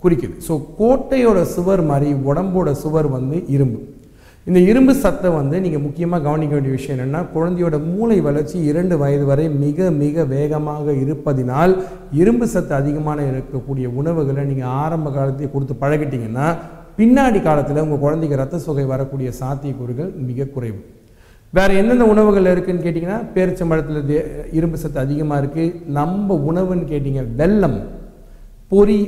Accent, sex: native, male